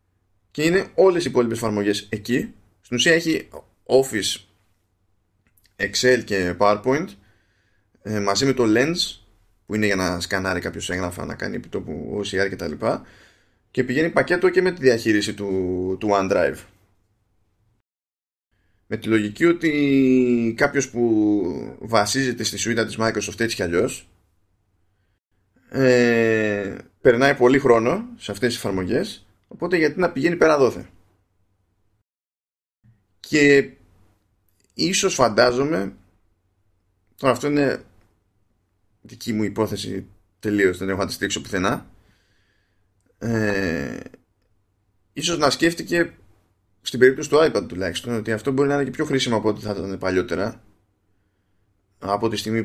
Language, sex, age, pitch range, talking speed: Greek, male, 20-39, 95-115 Hz, 125 wpm